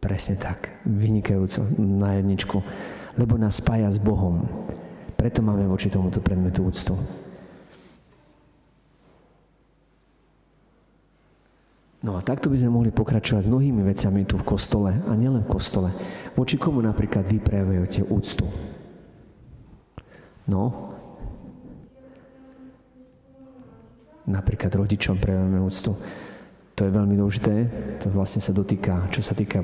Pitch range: 100-120 Hz